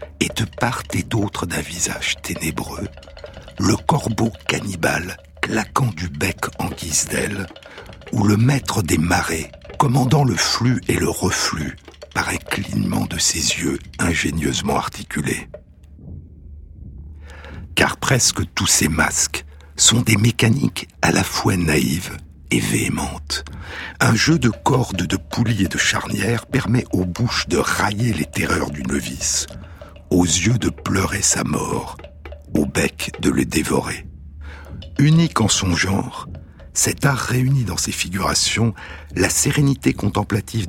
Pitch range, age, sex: 80-110 Hz, 60-79, male